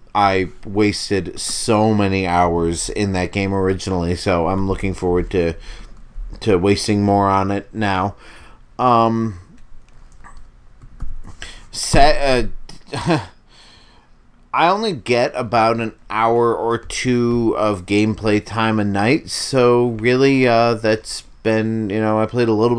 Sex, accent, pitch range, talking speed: male, American, 100-120 Hz, 125 wpm